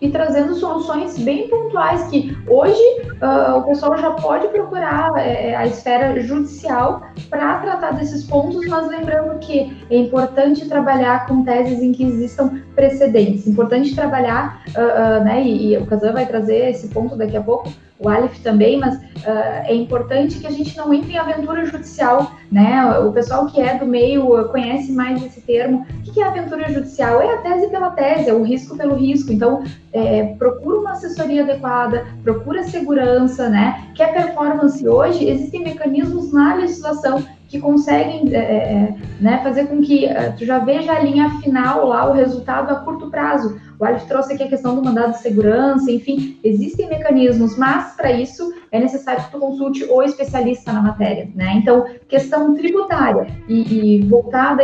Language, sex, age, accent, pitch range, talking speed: Portuguese, female, 10-29, Brazilian, 235-290 Hz, 170 wpm